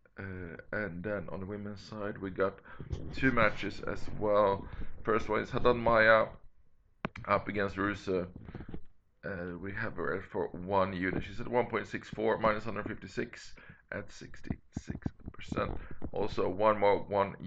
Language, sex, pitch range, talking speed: English, male, 95-110 Hz, 130 wpm